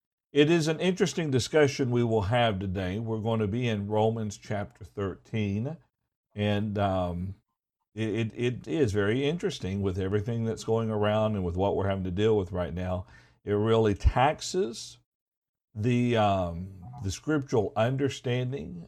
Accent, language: American, English